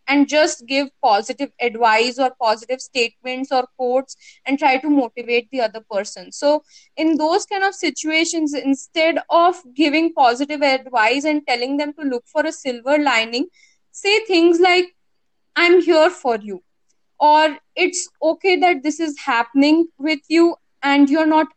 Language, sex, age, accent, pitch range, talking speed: English, female, 20-39, Indian, 260-335 Hz, 155 wpm